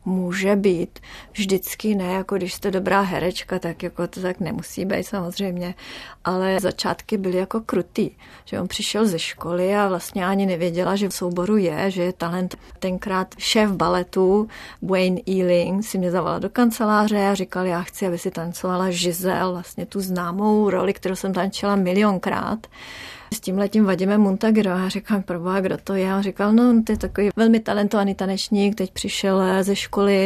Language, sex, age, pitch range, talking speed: Czech, female, 30-49, 185-210 Hz, 175 wpm